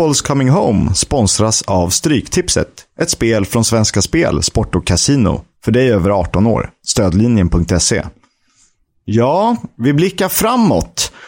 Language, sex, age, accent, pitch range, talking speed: Swedish, male, 30-49, native, 95-125 Hz, 135 wpm